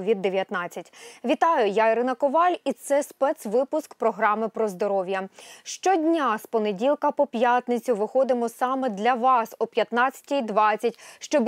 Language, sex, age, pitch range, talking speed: Ukrainian, female, 20-39, 225-280 Hz, 120 wpm